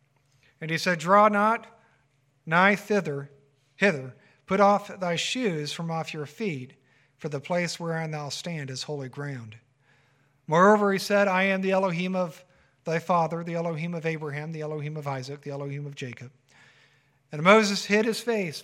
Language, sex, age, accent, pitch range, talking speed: English, male, 50-69, American, 140-175 Hz, 165 wpm